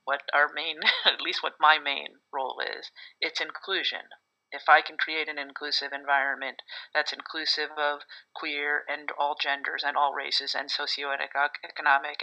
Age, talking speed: 40-59, 150 wpm